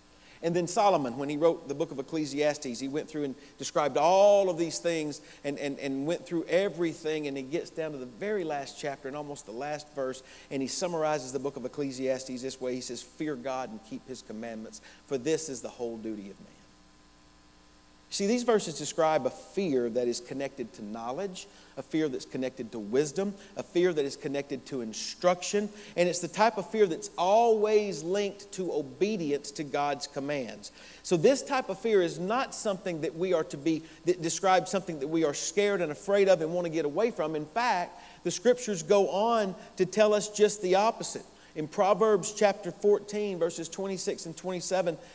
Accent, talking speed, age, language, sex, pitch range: American, 200 wpm, 40-59, English, male, 135-205 Hz